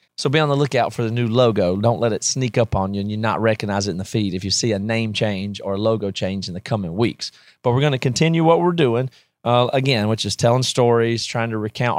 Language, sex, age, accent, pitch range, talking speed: English, male, 30-49, American, 105-125 Hz, 275 wpm